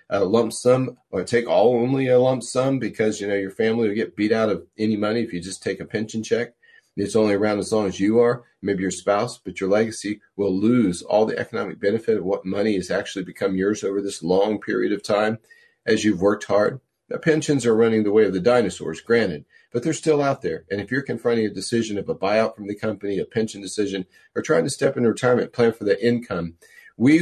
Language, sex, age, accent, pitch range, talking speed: English, male, 40-59, American, 100-125 Hz, 235 wpm